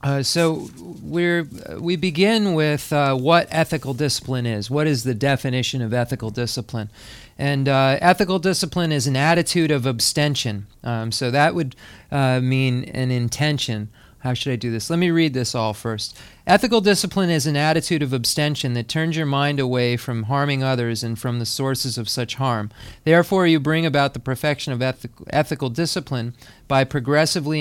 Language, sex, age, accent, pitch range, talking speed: English, male, 40-59, American, 125-150 Hz, 170 wpm